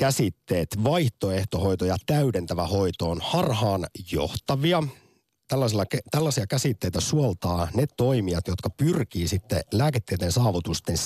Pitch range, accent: 90-125 Hz, native